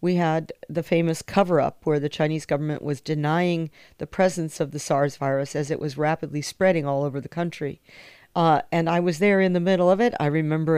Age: 50-69